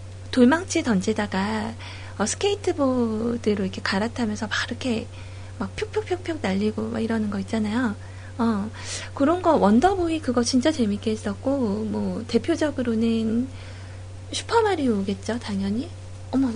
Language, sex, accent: Korean, female, native